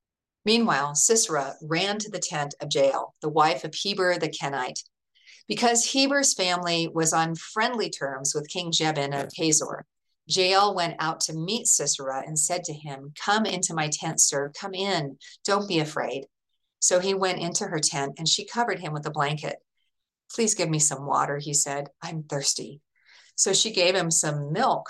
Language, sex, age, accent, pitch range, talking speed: English, female, 40-59, American, 145-185 Hz, 180 wpm